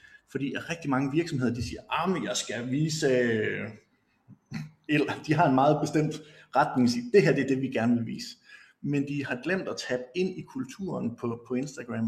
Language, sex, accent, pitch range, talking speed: Danish, male, native, 125-160 Hz, 185 wpm